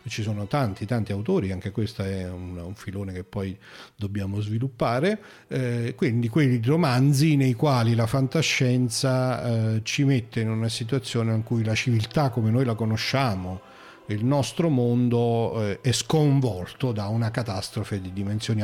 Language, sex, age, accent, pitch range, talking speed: Italian, male, 40-59, native, 100-125 Hz, 150 wpm